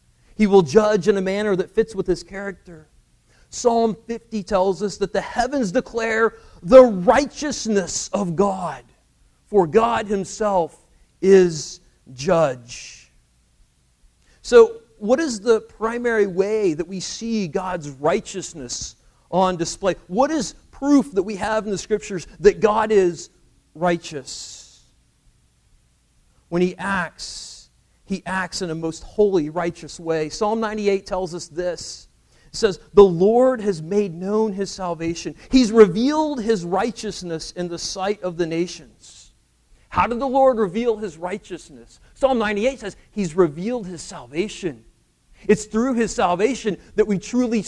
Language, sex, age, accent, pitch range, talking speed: English, male, 40-59, American, 170-220 Hz, 140 wpm